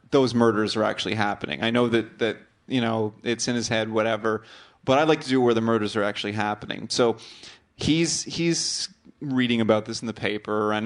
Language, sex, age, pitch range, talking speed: English, male, 30-49, 105-120 Hz, 210 wpm